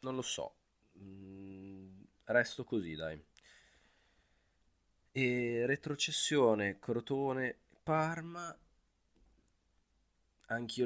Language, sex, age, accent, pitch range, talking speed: Italian, male, 20-39, native, 80-100 Hz, 60 wpm